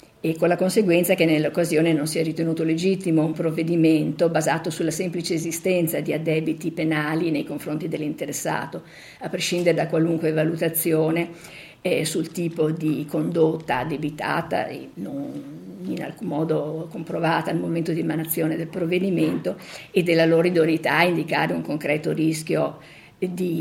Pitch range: 155-175 Hz